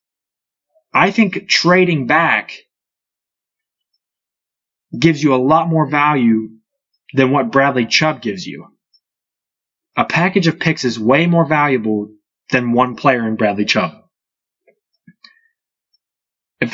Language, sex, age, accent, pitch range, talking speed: English, male, 20-39, American, 130-180 Hz, 110 wpm